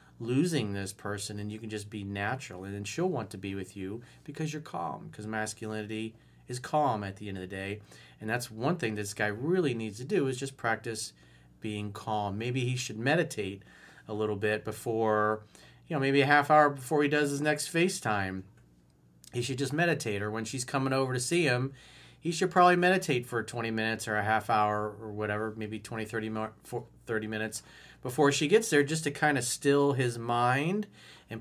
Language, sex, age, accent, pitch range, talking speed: English, male, 40-59, American, 105-140 Hz, 205 wpm